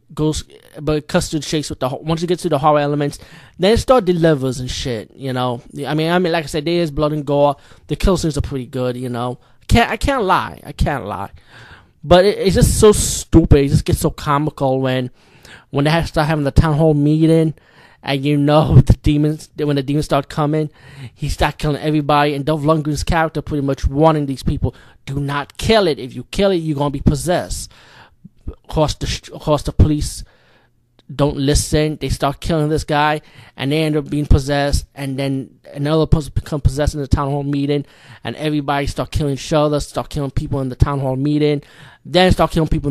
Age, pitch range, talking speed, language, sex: 20-39, 135-155 Hz, 215 wpm, English, male